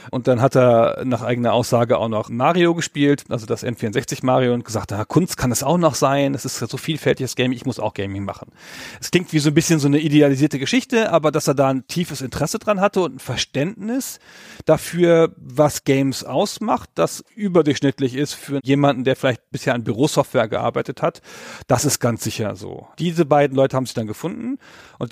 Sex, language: male, German